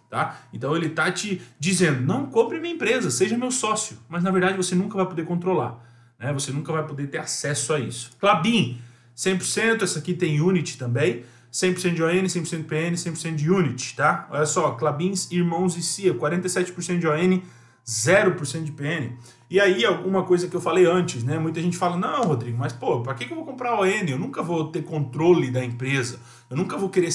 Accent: Brazilian